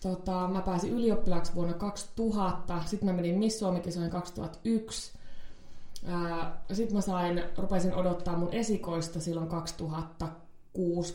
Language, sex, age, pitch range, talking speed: Finnish, female, 20-39, 165-195 Hz, 115 wpm